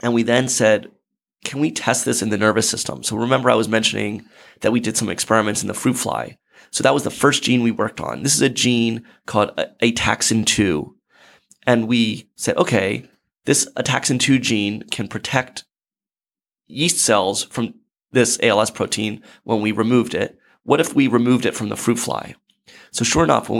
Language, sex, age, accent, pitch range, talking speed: English, male, 30-49, American, 110-125 Hz, 185 wpm